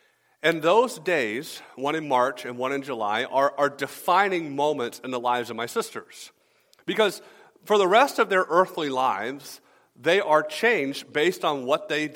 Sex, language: male, English